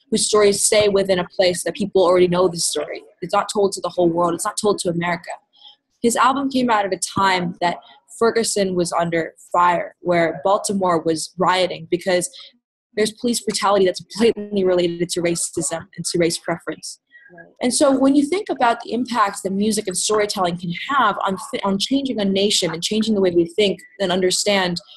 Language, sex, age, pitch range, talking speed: English, female, 20-39, 175-225 Hz, 190 wpm